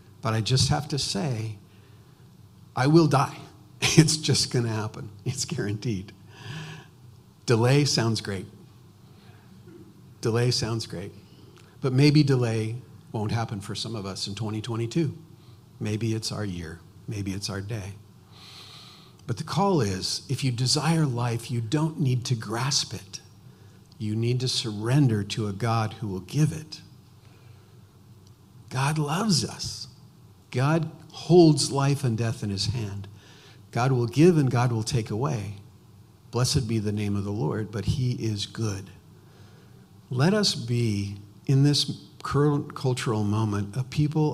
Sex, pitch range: male, 105-140 Hz